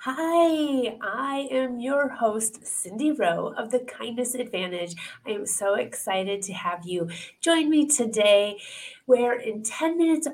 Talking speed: 145 wpm